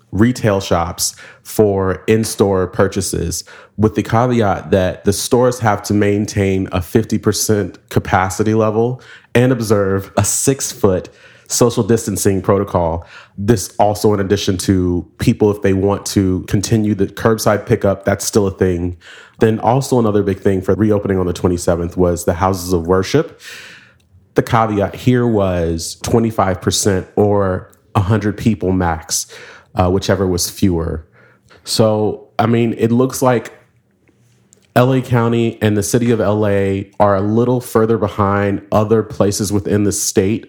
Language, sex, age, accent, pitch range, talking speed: English, male, 30-49, American, 95-110 Hz, 140 wpm